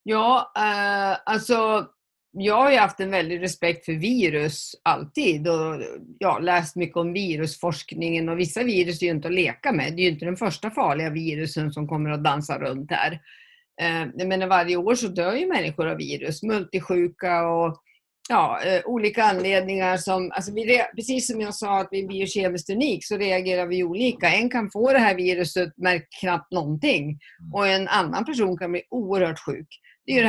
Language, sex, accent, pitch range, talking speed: Swedish, female, native, 175-215 Hz, 190 wpm